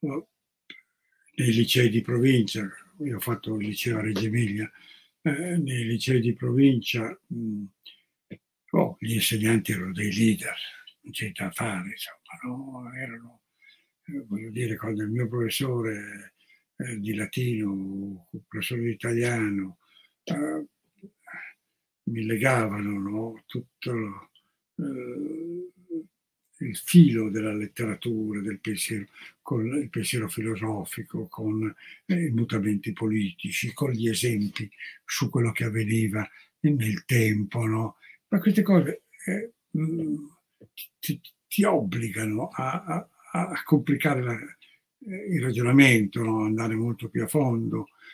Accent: native